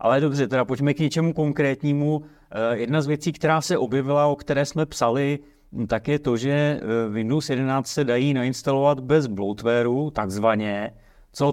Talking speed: 155 wpm